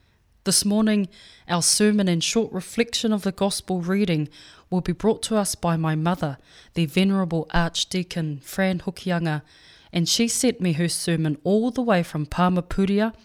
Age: 20-39